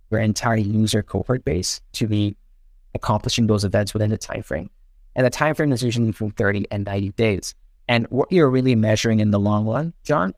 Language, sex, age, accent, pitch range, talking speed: English, male, 30-49, American, 105-125 Hz, 190 wpm